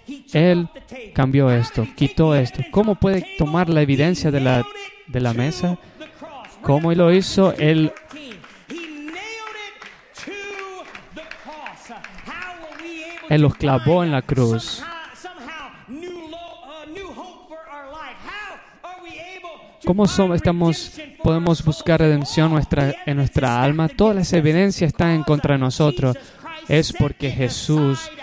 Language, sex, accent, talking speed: Spanish, male, American, 100 wpm